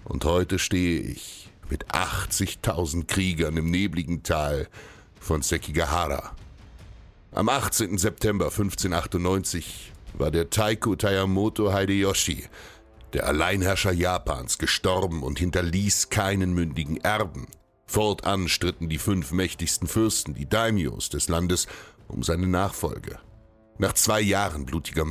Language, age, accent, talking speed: German, 60-79, German, 110 wpm